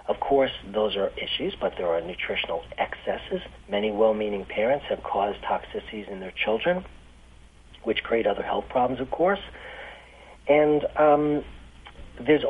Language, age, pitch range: English, 40-59, 100-130 Hz